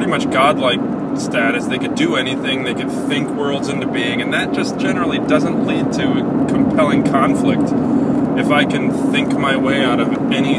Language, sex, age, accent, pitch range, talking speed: English, male, 30-49, American, 260-275 Hz, 180 wpm